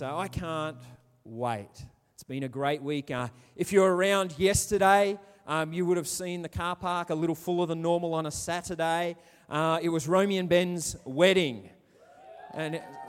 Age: 30-49